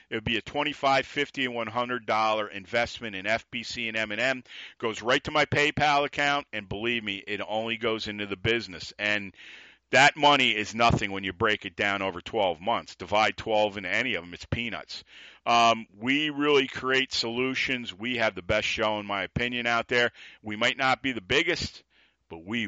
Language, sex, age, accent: English, male, 50-69, American